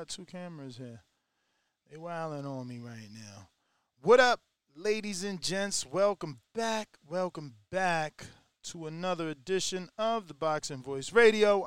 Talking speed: 135 wpm